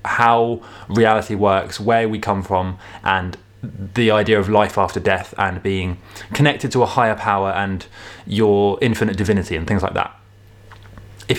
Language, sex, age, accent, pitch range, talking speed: English, male, 20-39, British, 95-120 Hz, 160 wpm